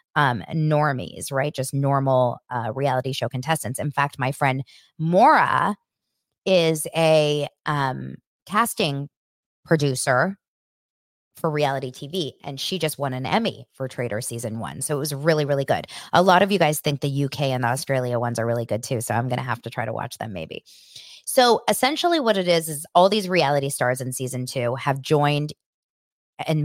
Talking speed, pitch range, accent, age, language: 180 wpm, 130-160 Hz, American, 20-39, English